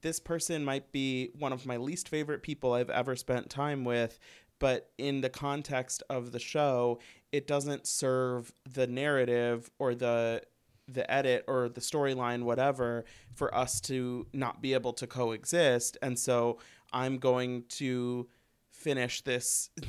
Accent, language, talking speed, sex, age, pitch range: American, English, 150 wpm, male, 30-49, 125-150 Hz